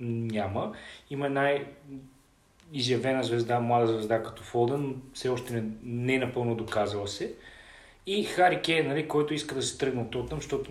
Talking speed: 155 wpm